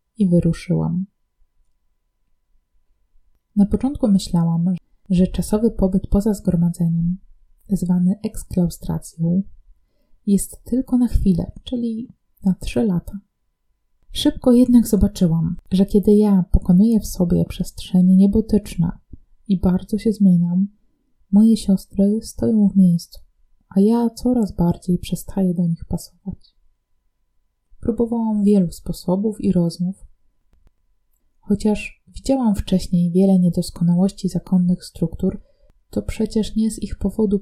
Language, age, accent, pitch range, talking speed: Polish, 20-39, native, 175-210 Hz, 105 wpm